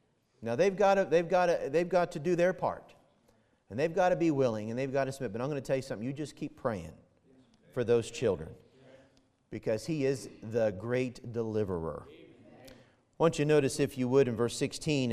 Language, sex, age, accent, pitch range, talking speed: English, male, 40-59, American, 115-145 Hz, 220 wpm